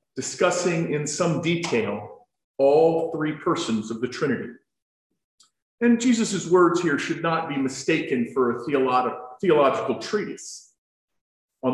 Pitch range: 130-205 Hz